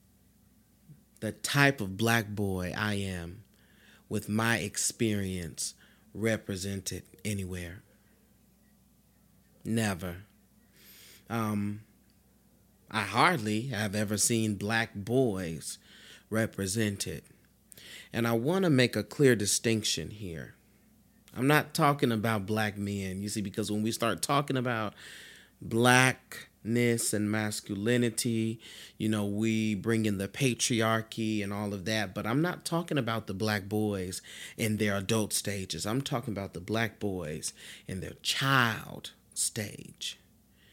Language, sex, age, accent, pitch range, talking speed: English, male, 30-49, American, 100-115 Hz, 120 wpm